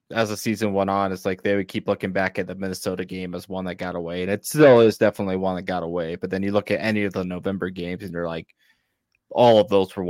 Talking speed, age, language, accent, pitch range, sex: 280 wpm, 20-39, English, American, 90-110 Hz, male